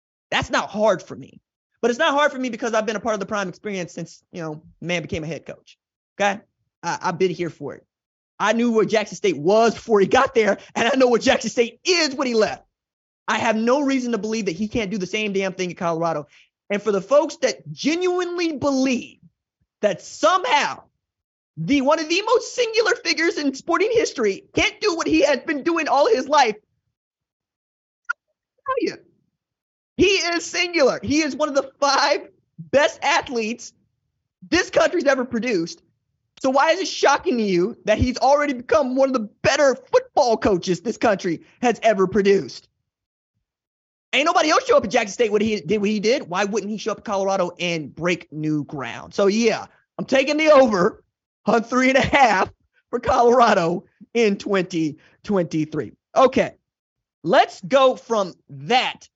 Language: English